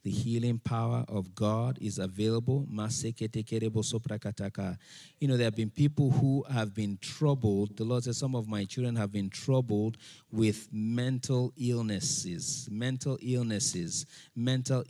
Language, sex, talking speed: English, male, 130 wpm